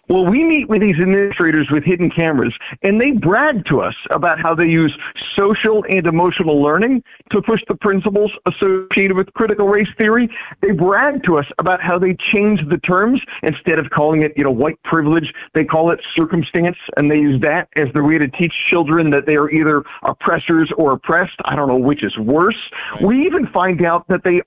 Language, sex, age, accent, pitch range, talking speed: English, male, 50-69, American, 150-205 Hz, 200 wpm